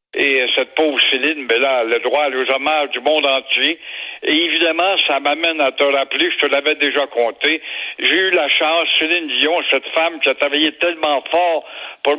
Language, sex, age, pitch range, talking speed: French, male, 60-79, 155-185 Hz, 190 wpm